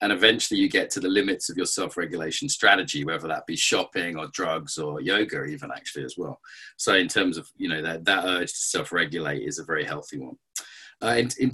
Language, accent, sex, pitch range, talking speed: English, British, male, 95-145 Hz, 220 wpm